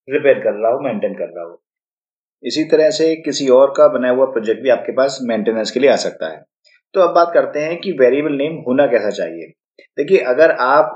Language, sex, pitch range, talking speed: Hindi, male, 125-155 Hz, 225 wpm